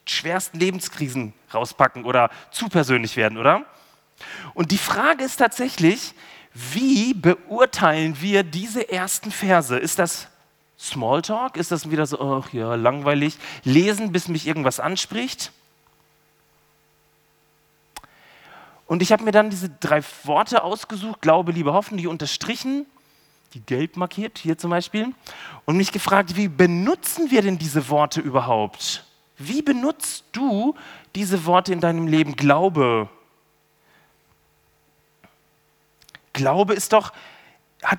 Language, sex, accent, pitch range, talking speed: German, male, German, 155-210 Hz, 120 wpm